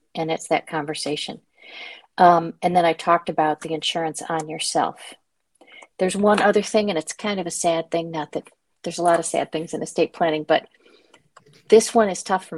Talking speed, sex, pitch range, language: 200 wpm, female, 165-200 Hz, English